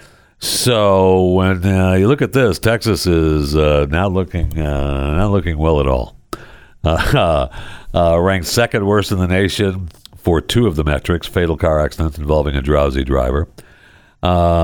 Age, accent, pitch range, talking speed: 60-79, American, 85-105 Hz, 160 wpm